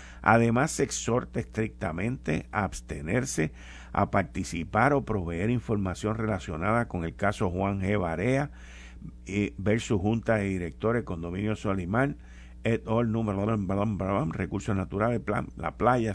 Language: Spanish